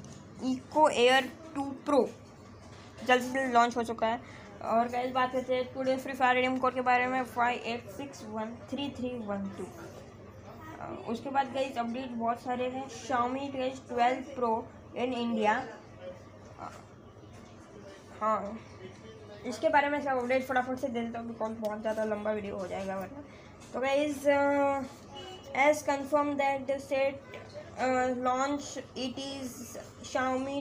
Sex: female